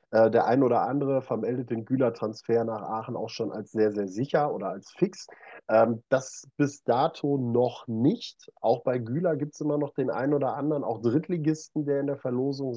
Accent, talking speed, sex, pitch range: German, 190 wpm, male, 105-130 Hz